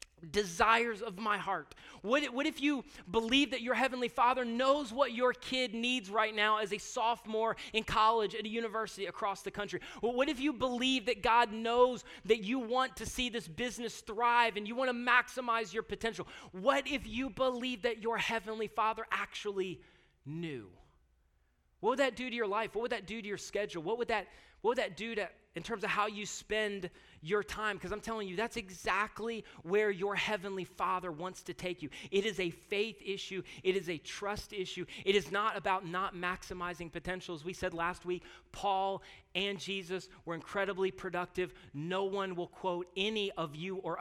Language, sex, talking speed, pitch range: English, male, 195 wpm, 170-225 Hz